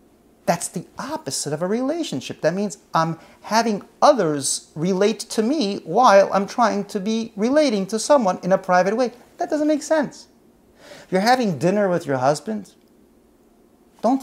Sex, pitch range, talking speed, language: male, 160-255 Hz, 155 wpm, English